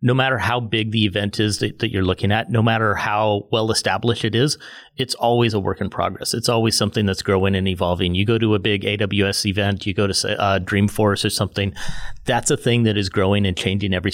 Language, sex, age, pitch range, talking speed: English, male, 30-49, 100-120 Hz, 240 wpm